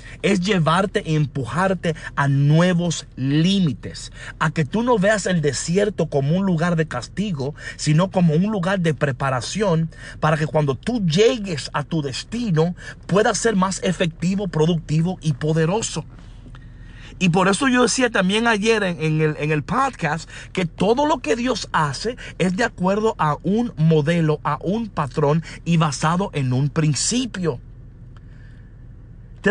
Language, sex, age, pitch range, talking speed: Spanish, male, 50-69, 140-195 Hz, 150 wpm